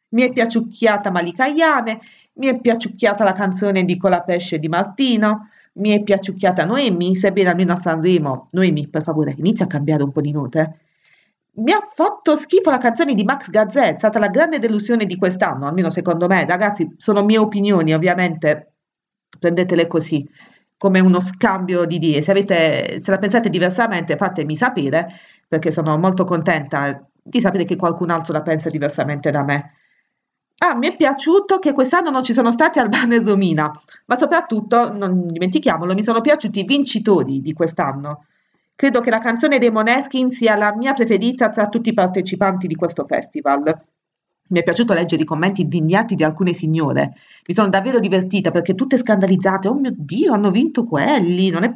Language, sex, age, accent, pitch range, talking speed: Italian, female, 30-49, native, 165-230 Hz, 175 wpm